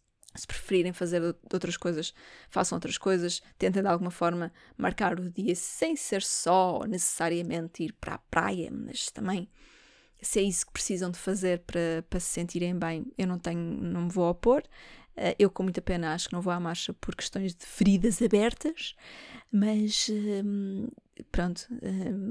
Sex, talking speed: female, 165 wpm